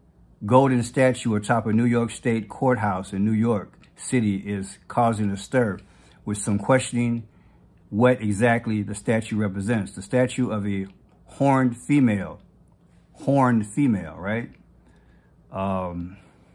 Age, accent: 50-69, American